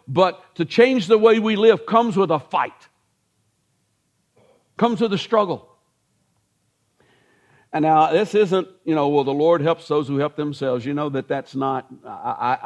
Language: English